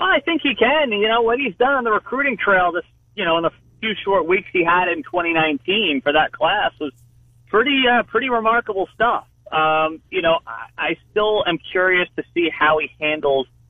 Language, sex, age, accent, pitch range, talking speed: English, male, 40-59, American, 135-195 Hz, 205 wpm